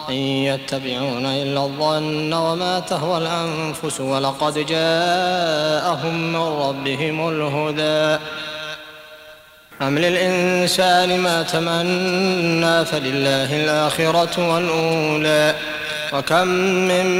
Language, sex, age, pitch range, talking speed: Arabic, male, 20-39, 150-175 Hz, 70 wpm